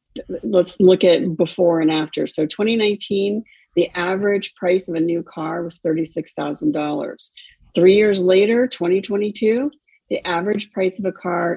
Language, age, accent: English, 50-69, American